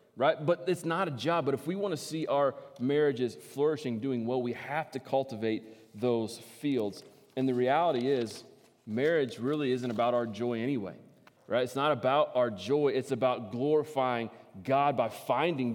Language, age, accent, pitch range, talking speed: English, 30-49, American, 115-145 Hz, 175 wpm